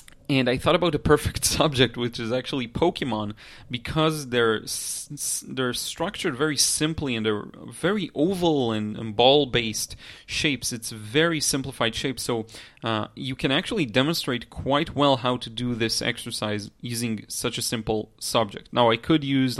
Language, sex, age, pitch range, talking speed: English, male, 30-49, 115-140 Hz, 160 wpm